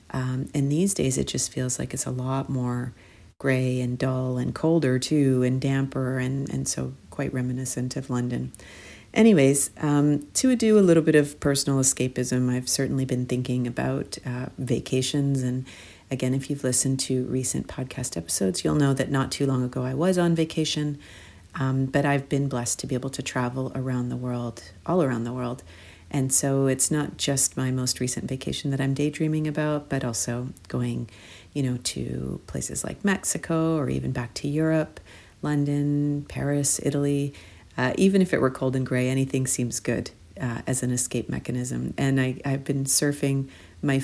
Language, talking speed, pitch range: English, 180 wpm, 120-140 Hz